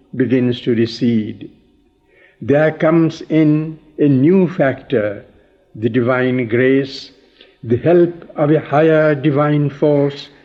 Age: 60-79